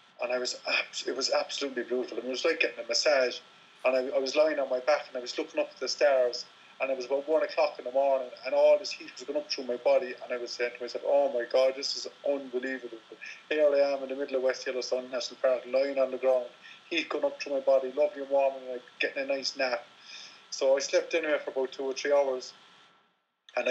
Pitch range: 120-145 Hz